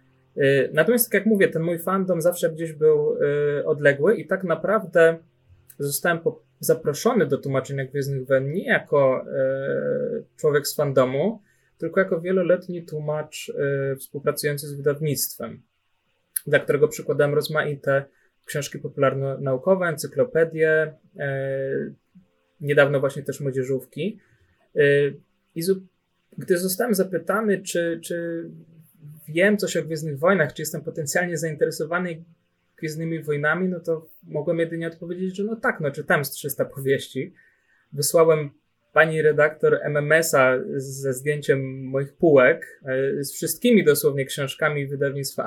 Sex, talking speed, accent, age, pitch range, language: male, 125 wpm, native, 20-39, 140-180 Hz, Polish